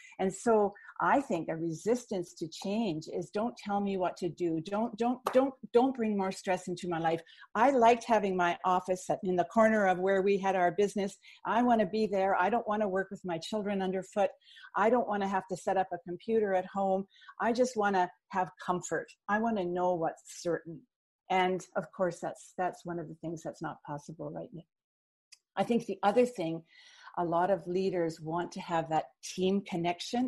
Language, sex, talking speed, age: English, female, 210 wpm, 50-69